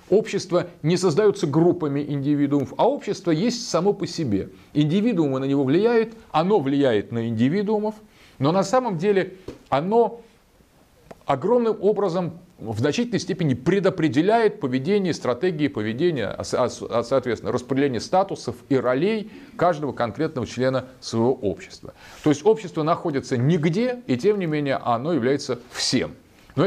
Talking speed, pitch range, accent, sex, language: 125 wpm, 130-195 Hz, native, male, Russian